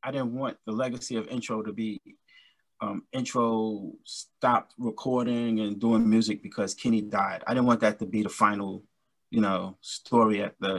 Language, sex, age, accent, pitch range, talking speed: English, male, 20-39, American, 105-115 Hz, 180 wpm